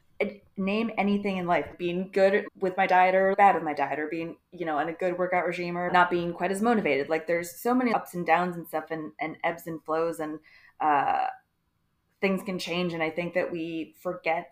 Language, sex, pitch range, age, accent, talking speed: English, female, 165-190 Hz, 20-39, American, 225 wpm